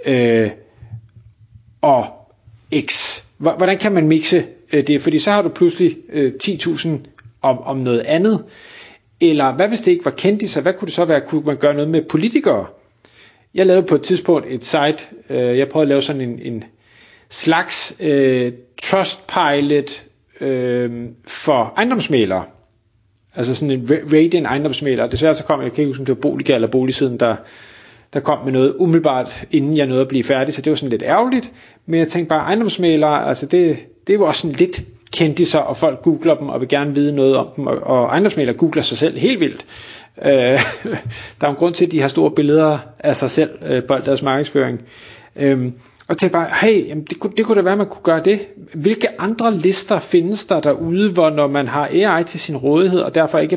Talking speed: 200 wpm